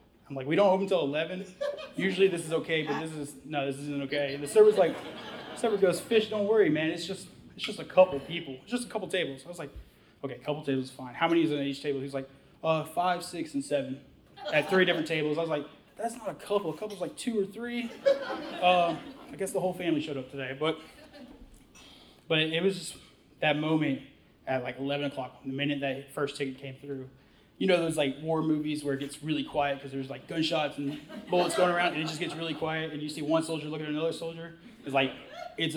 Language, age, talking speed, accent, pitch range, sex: English, 20-39, 240 wpm, American, 140-175 Hz, male